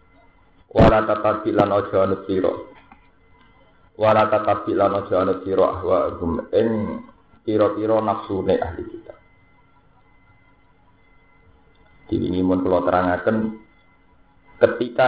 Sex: male